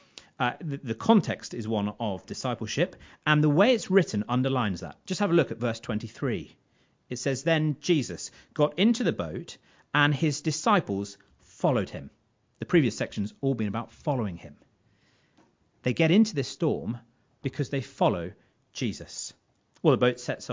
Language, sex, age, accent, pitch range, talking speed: English, male, 40-59, British, 115-170 Hz, 165 wpm